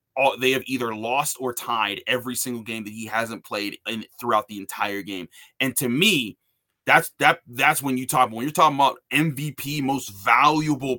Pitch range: 115-135 Hz